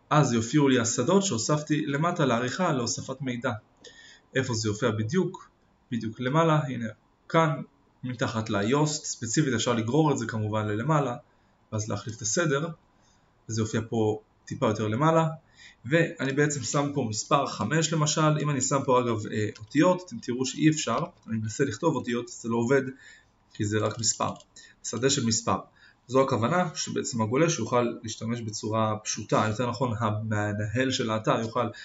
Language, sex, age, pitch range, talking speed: Hebrew, male, 20-39, 110-145 Hz, 155 wpm